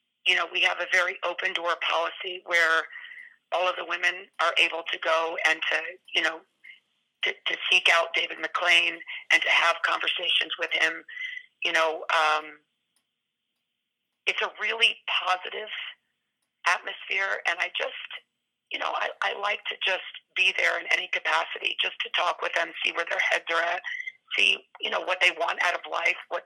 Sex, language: female, English